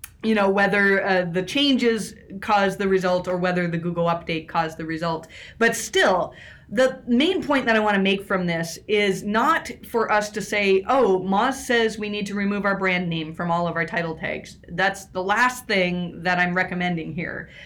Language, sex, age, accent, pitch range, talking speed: English, female, 30-49, American, 175-220 Hz, 200 wpm